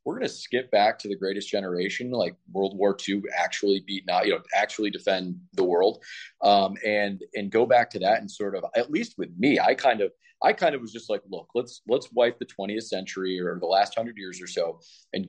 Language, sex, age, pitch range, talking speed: English, male, 30-49, 95-125 Hz, 235 wpm